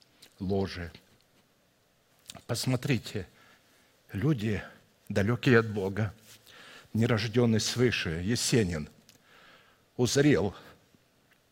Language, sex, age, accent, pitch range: Russian, male, 60-79, native, 105-130 Hz